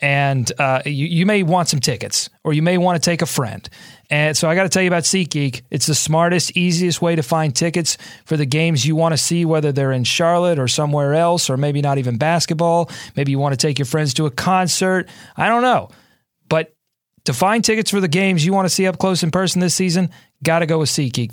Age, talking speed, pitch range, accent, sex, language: 30-49, 245 wpm, 140-180 Hz, American, male, English